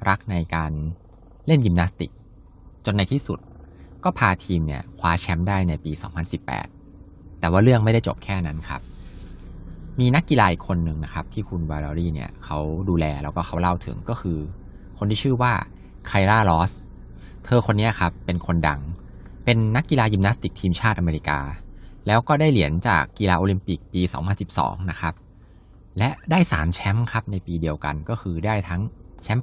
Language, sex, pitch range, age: Thai, male, 85-105 Hz, 20-39